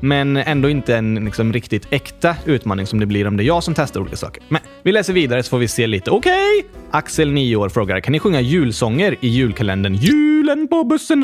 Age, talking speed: 20-39, 225 wpm